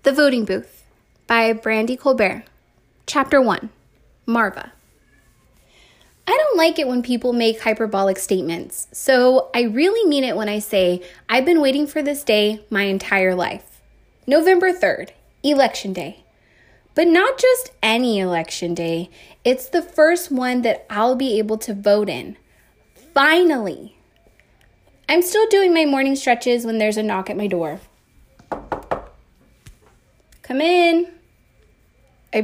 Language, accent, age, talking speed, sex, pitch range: English, American, 20-39, 135 wpm, female, 205-280 Hz